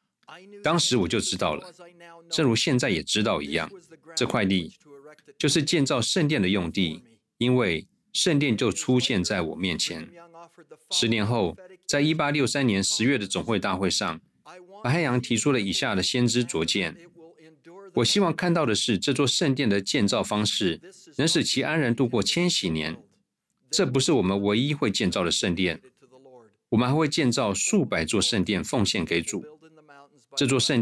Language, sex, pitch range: Chinese, male, 110-160 Hz